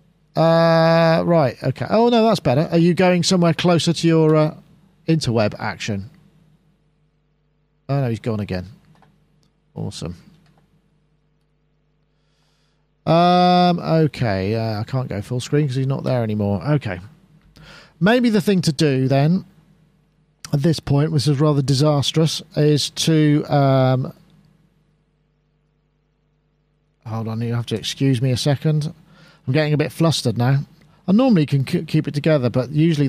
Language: English